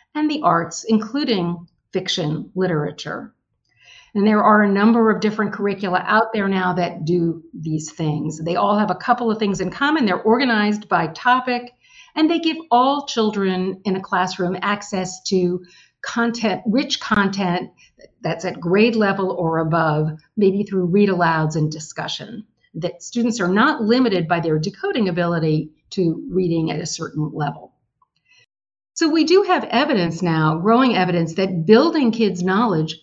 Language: English